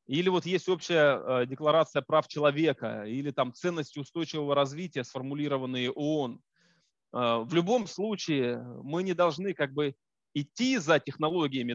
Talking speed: 130 wpm